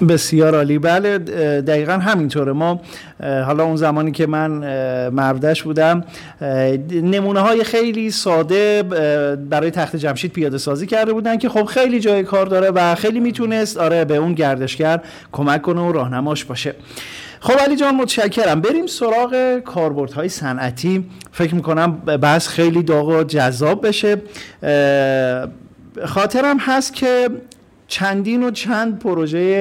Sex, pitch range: male, 150-205 Hz